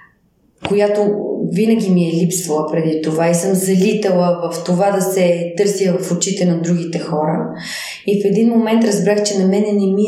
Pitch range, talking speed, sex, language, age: 175-210 Hz, 180 wpm, female, Bulgarian, 20-39